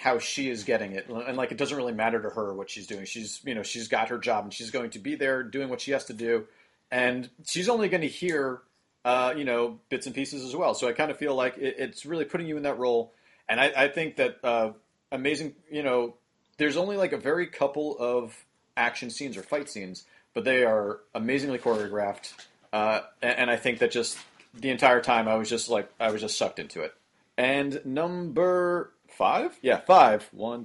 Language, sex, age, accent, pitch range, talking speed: English, male, 40-59, American, 125-180 Hz, 225 wpm